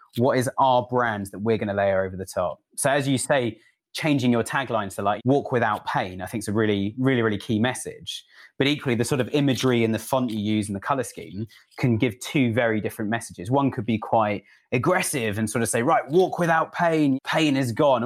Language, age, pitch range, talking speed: English, 20-39, 105-135 Hz, 235 wpm